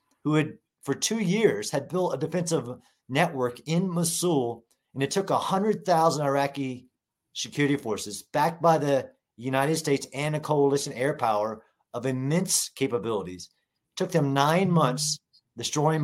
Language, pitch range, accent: English, 130-165 Hz, American